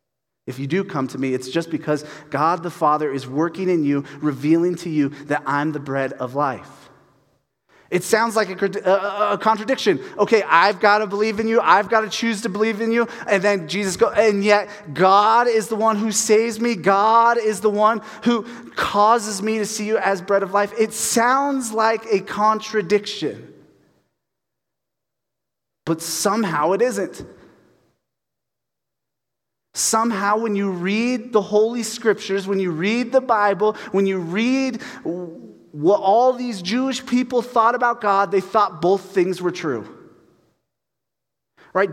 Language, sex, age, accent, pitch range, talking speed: English, male, 30-49, American, 155-220 Hz, 160 wpm